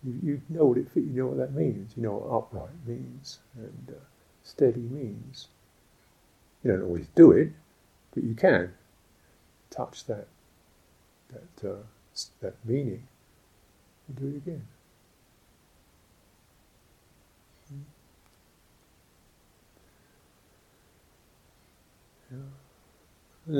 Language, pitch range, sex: English, 100-135 Hz, male